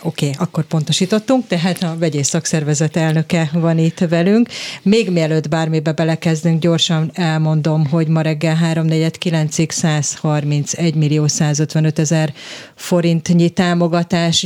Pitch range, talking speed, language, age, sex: 150-175 Hz, 105 wpm, Hungarian, 30-49, female